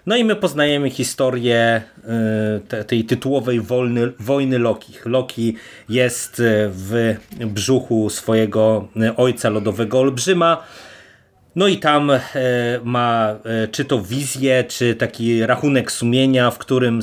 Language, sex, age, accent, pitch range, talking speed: Polish, male, 30-49, native, 110-130 Hz, 105 wpm